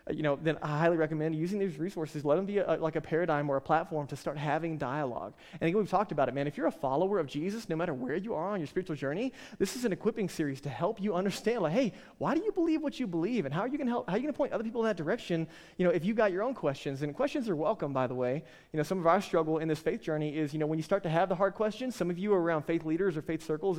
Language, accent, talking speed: English, American, 310 wpm